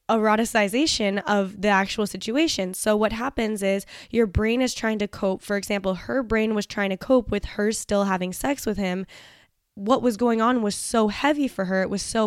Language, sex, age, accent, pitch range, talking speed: English, female, 10-29, American, 205-235 Hz, 205 wpm